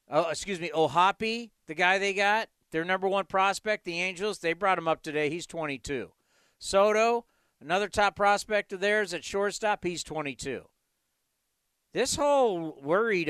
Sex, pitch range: male, 155-210 Hz